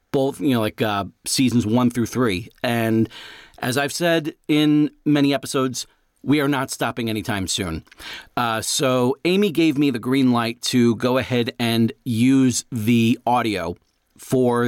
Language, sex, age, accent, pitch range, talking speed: English, male, 40-59, American, 110-130 Hz, 155 wpm